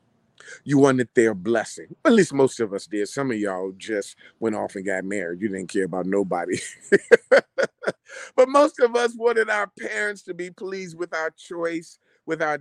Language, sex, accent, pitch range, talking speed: English, male, American, 120-165 Hz, 190 wpm